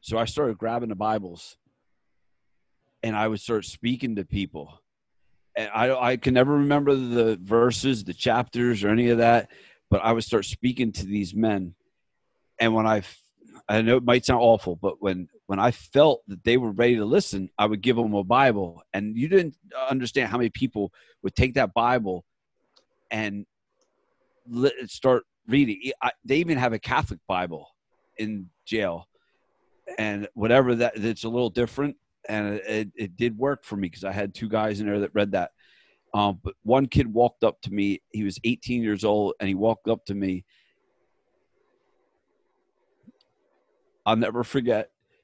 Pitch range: 100-125 Hz